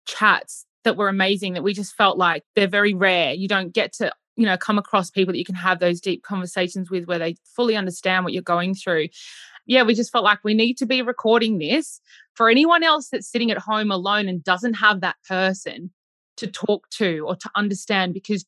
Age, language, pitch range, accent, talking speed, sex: 20-39, English, 185-220 Hz, Australian, 220 wpm, female